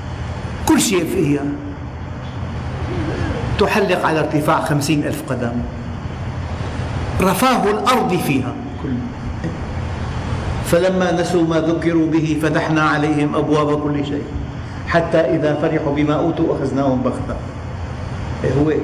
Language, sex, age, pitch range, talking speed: Arabic, male, 50-69, 120-165 Hz, 95 wpm